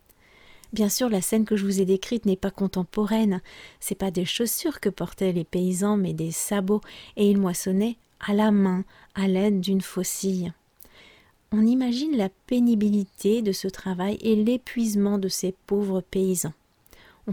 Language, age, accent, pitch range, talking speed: French, 40-59, French, 185-220 Hz, 165 wpm